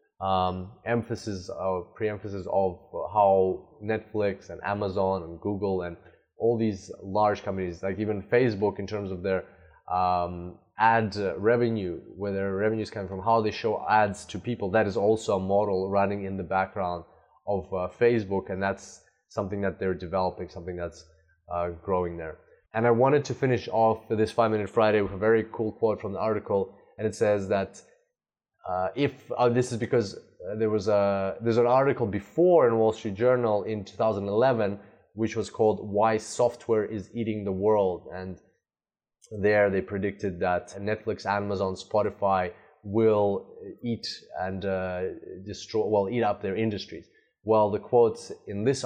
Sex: male